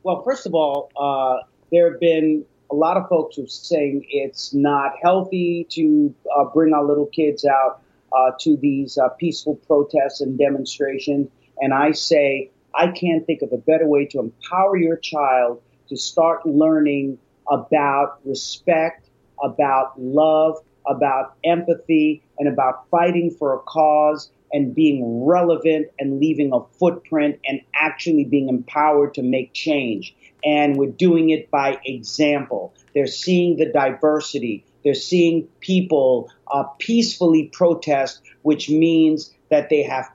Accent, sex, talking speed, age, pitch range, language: American, male, 145 wpm, 40-59, 140-165 Hz, English